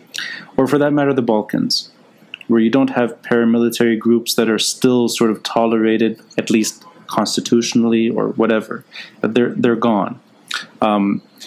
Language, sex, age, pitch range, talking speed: English, male, 30-49, 110-155 Hz, 145 wpm